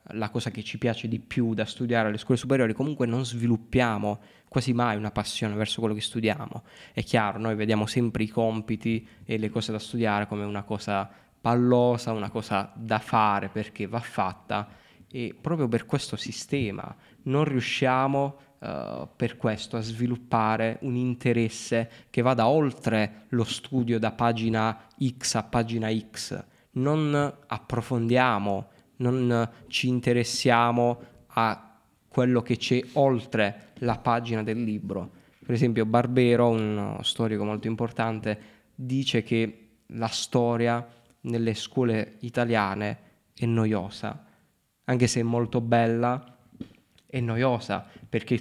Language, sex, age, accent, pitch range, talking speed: Italian, male, 20-39, native, 110-125 Hz, 135 wpm